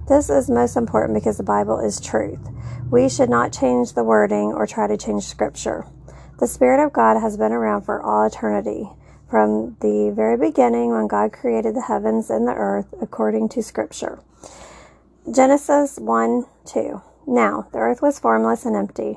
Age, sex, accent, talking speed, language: 40-59, female, American, 170 wpm, English